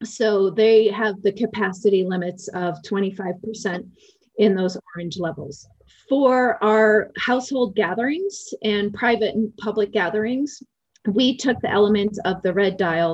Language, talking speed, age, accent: English, 130 wpm, 30-49, American